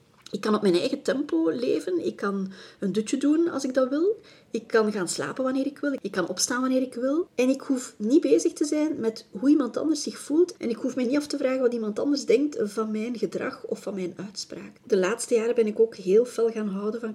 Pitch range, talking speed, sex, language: 210-260 Hz, 250 wpm, female, Dutch